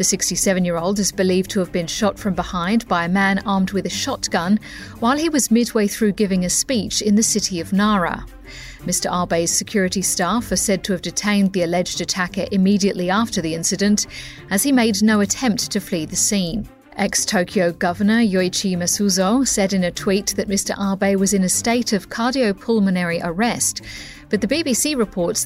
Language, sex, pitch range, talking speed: English, female, 180-225 Hz, 180 wpm